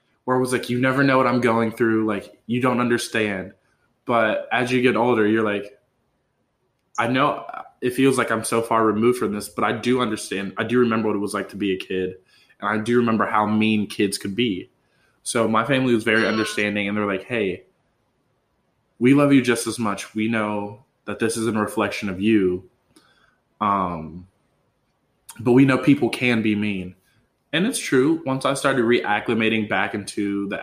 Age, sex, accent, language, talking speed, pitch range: 20-39, male, American, English, 195 wpm, 105-120 Hz